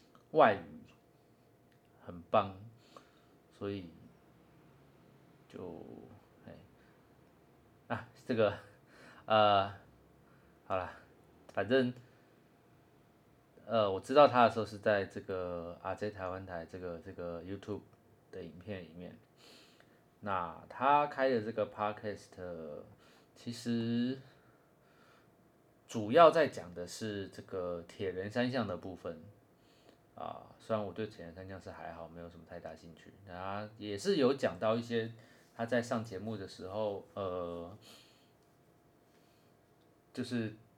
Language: Chinese